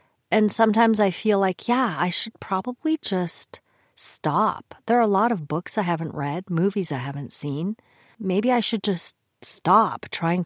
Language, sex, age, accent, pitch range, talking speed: English, female, 40-59, American, 160-225 Hz, 170 wpm